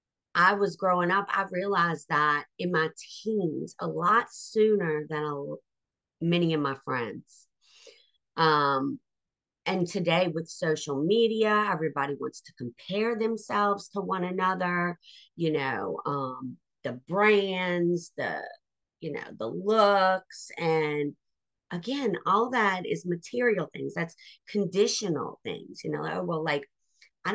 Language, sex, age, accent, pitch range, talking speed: English, female, 50-69, American, 160-215 Hz, 125 wpm